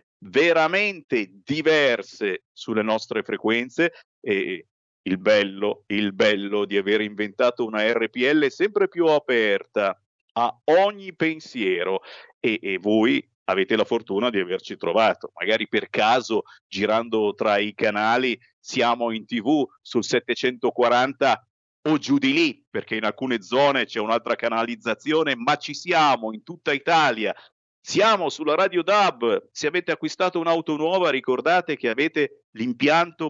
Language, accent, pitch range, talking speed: Italian, native, 120-185 Hz, 130 wpm